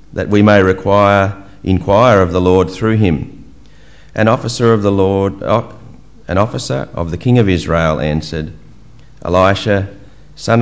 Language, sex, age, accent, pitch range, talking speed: English, male, 40-59, Australian, 90-110 Hz, 140 wpm